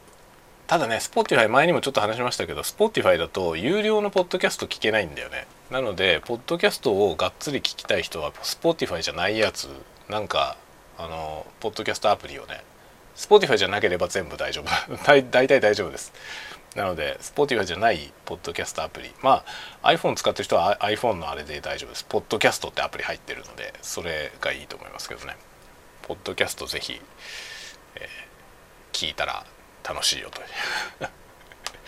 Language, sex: Japanese, male